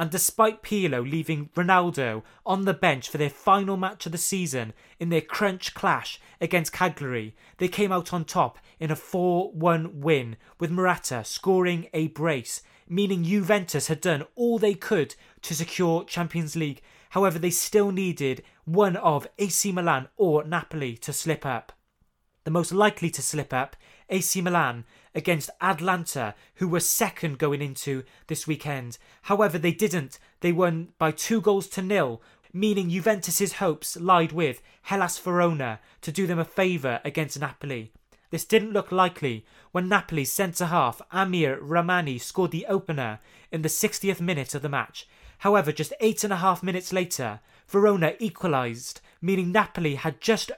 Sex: male